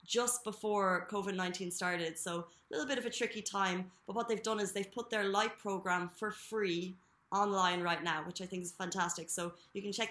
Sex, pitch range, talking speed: female, 180-215 Hz, 215 wpm